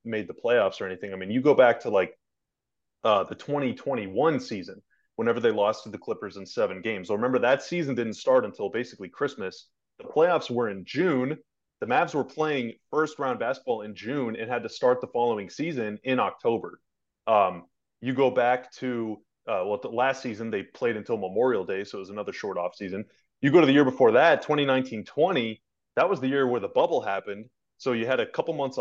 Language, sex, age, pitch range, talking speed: English, male, 30-49, 110-145 Hz, 210 wpm